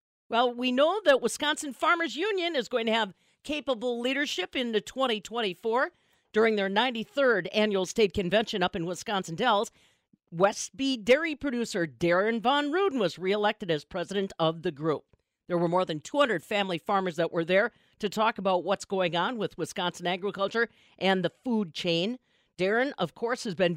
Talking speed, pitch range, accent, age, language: 175 wpm, 185-250 Hz, American, 50-69, English